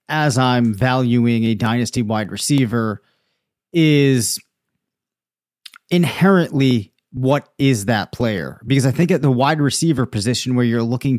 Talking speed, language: 130 wpm, English